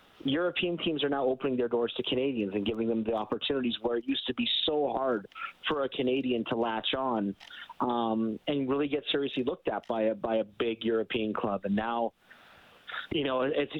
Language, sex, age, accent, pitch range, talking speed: English, male, 40-59, American, 115-140 Hz, 200 wpm